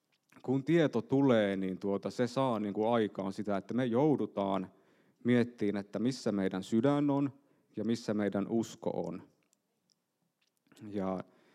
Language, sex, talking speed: Finnish, male, 120 wpm